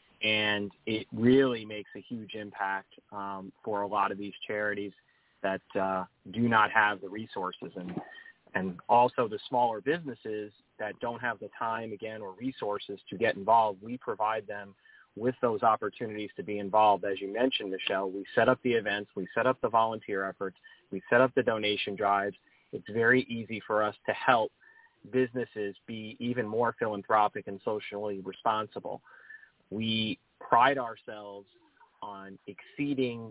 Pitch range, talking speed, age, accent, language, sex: 100-115 Hz, 160 wpm, 30-49, American, English, male